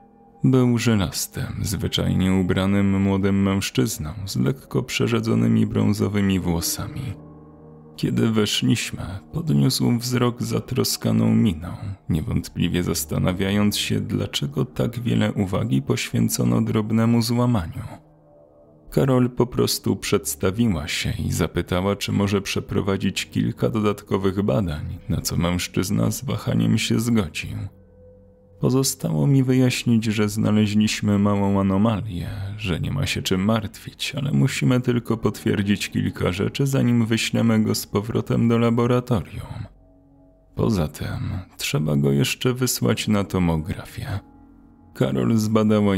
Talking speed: 110 wpm